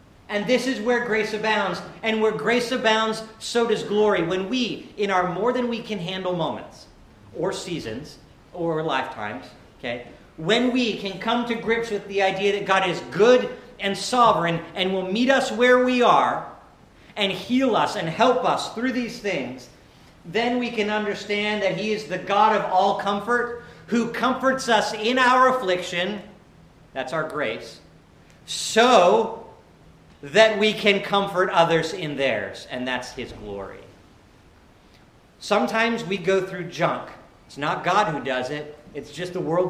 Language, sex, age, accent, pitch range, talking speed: English, male, 40-59, American, 165-220 Hz, 160 wpm